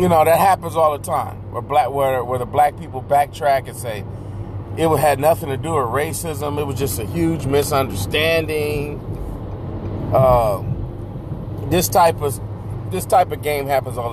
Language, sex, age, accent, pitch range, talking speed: English, male, 30-49, American, 110-140 Hz, 170 wpm